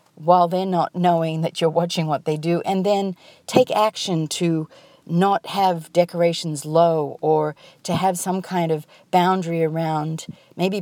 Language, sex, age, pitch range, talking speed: English, female, 50-69, 165-210 Hz, 155 wpm